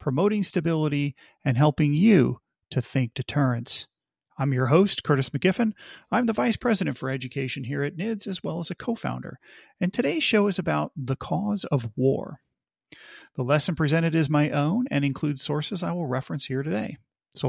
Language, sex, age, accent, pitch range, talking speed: English, male, 40-59, American, 130-185 Hz, 175 wpm